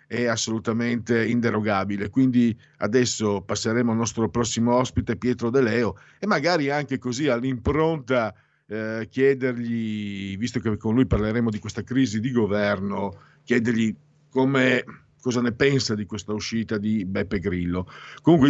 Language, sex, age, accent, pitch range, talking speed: Italian, male, 50-69, native, 105-130 Hz, 135 wpm